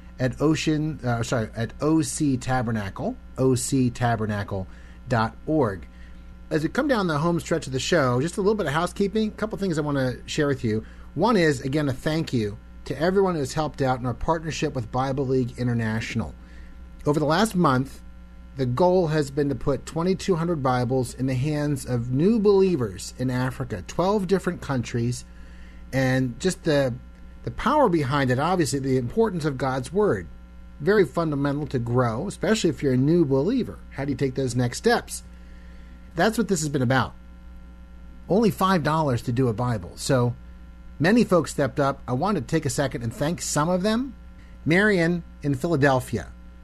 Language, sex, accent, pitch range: English, male, American, 110-165 Hz